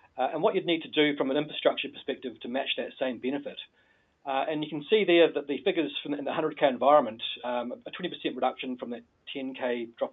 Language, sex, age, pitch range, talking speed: English, male, 40-59, 130-155 Hz, 220 wpm